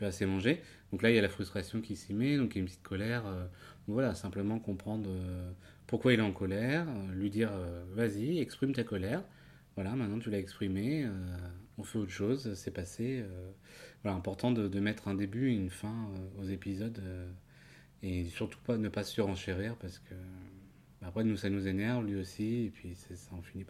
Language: French